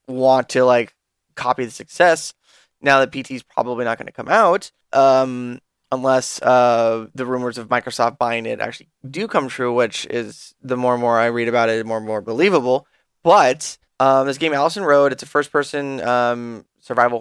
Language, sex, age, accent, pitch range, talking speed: English, male, 10-29, American, 120-140 Hz, 195 wpm